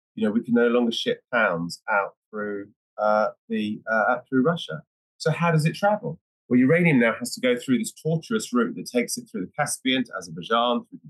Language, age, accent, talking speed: English, 30-49, British, 210 wpm